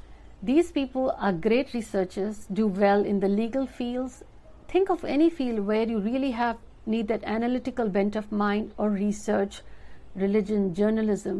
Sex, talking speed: female, 155 wpm